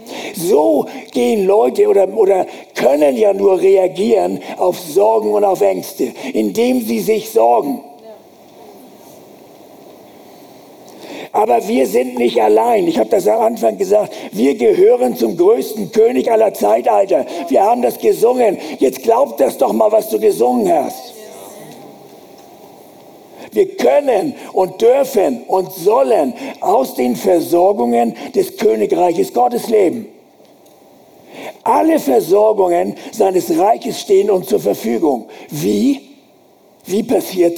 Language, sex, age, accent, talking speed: German, male, 60-79, German, 115 wpm